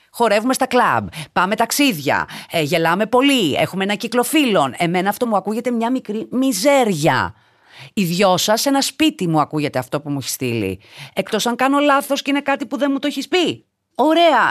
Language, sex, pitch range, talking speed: Greek, female, 160-255 Hz, 180 wpm